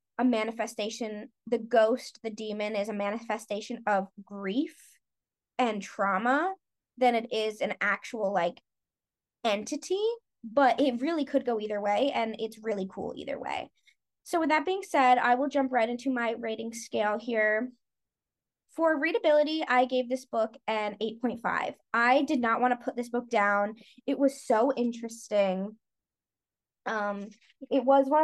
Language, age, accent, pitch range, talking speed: English, 20-39, American, 215-275 Hz, 155 wpm